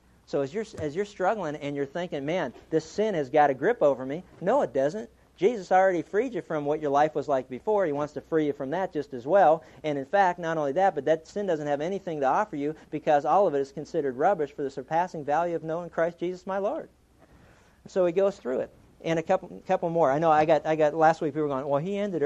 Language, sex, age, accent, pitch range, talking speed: English, male, 50-69, American, 140-185 Hz, 265 wpm